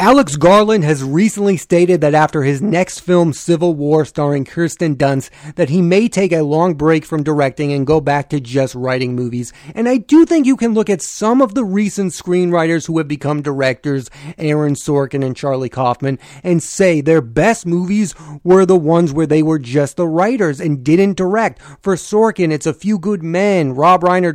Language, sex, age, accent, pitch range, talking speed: English, male, 30-49, American, 150-190 Hz, 195 wpm